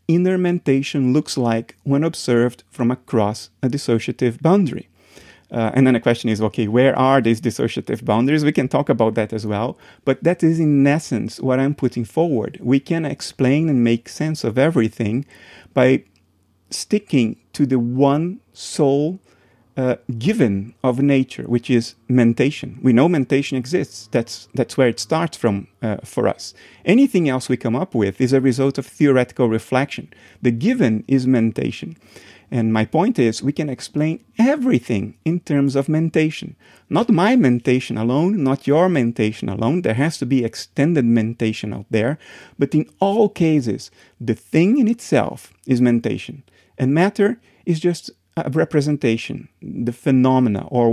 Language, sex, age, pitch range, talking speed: English, male, 30-49, 115-145 Hz, 160 wpm